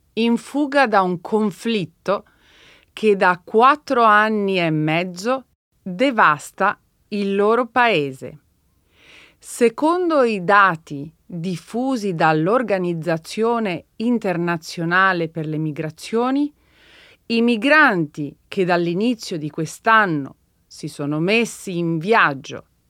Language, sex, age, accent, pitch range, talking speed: Italian, female, 30-49, native, 170-260 Hz, 90 wpm